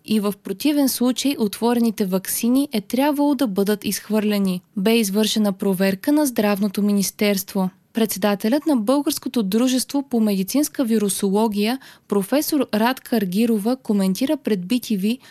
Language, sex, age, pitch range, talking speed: Bulgarian, female, 20-39, 205-265 Hz, 120 wpm